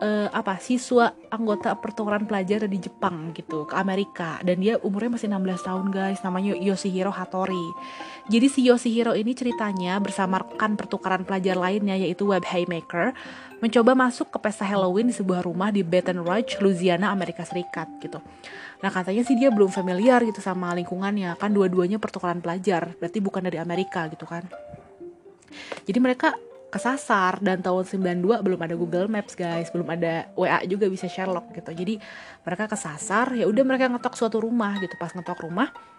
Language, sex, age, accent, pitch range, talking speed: Indonesian, female, 20-39, native, 180-225 Hz, 165 wpm